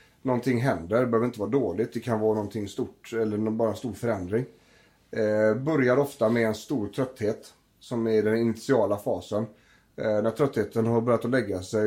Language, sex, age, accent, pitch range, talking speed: Swedish, male, 30-49, native, 105-120 Hz, 175 wpm